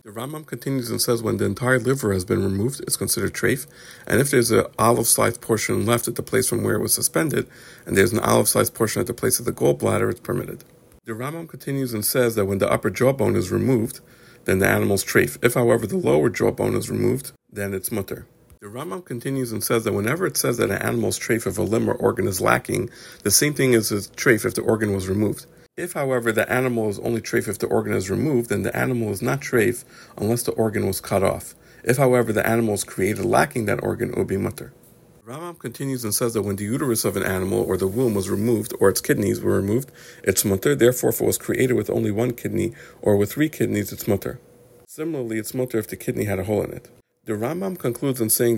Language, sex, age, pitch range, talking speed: English, male, 50-69, 105-125 Hz, 235 wpm